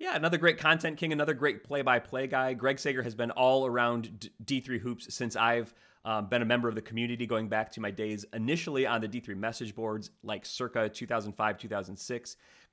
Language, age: English, 30-49